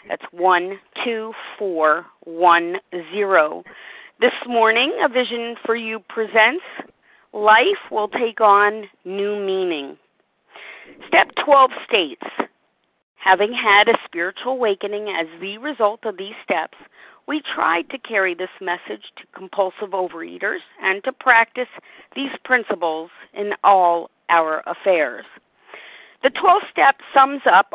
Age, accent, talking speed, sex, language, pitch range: 40-59, American, 110 wpm, female, English, 190-255 Hz